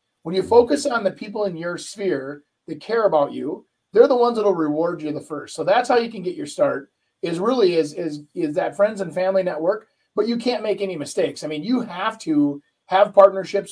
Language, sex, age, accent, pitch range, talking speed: English, male, 30-49, American, 160-205 Hz, 230 wpm